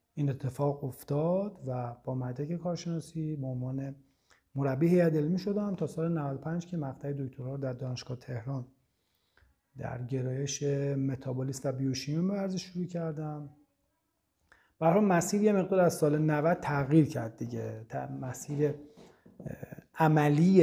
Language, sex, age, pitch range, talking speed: Persian, male, 40-59, 130-160 Hz, 120 wpm